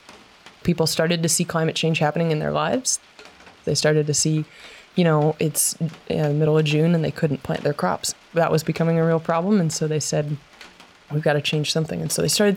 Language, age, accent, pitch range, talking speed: English, 20-39, American, 155-180 Hz, 225 wpm